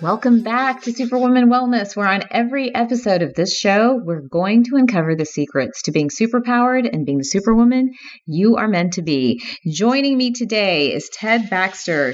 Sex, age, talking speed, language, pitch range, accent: female, 30-49, 180 wpm, English, 160-230 Hz, American